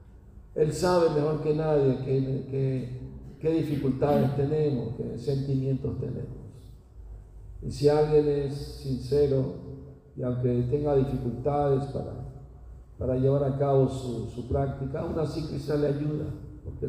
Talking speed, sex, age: 120 wpm, male, 50-69